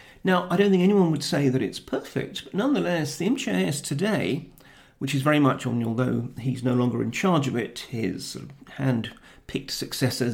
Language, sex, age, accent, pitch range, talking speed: English, male, 40-59, British, 135-185 Hz, 180 wpm